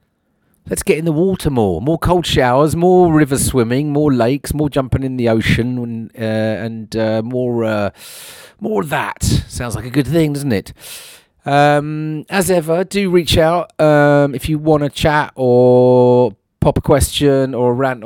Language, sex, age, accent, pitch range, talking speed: English, male, 40-59, British, 110-135 Hz, 175 wpm